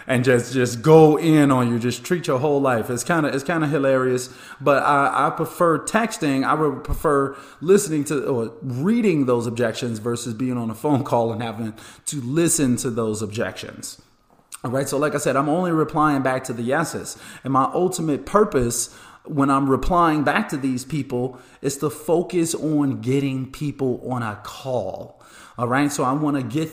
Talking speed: 195 wpm